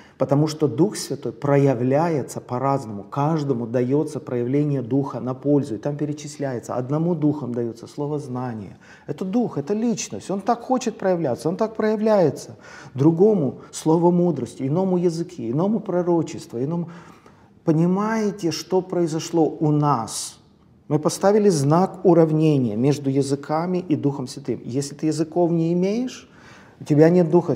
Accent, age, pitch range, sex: native, 40-59, 135-175 Hz, male